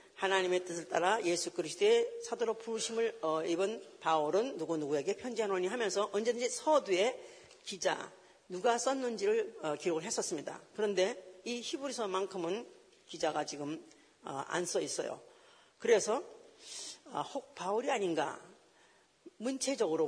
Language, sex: Korean, female